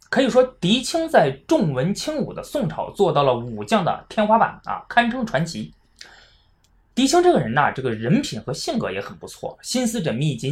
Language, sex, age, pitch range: Chinese, male, 20-39, 135-215 Hz